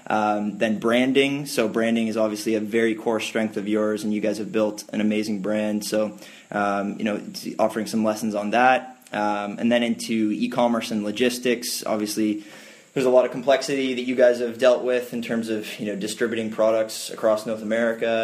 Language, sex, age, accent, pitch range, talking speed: English, male, 20-39, American, 105-120 Hz, 195 wpm